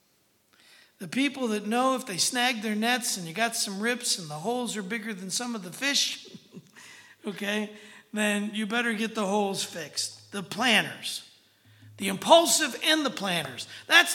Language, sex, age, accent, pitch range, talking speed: English, male, 60-79, American, 185-245 Hz, 165 wpm